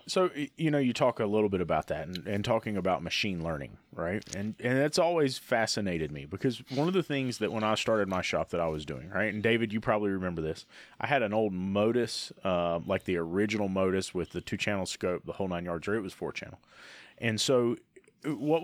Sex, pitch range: male, 95-125 Hz